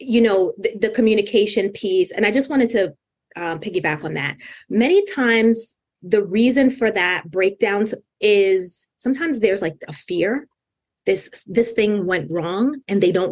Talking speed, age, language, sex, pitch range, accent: 160 wpm, 20-39, English, female, 195-270 Hz, American